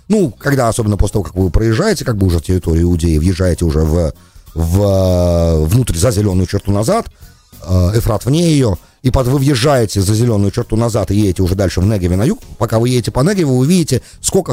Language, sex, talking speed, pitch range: English, male, 205 wpm, 90-125 Hz